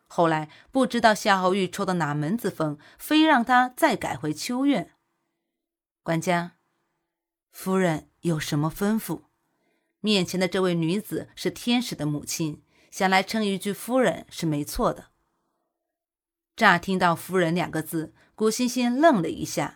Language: Chinese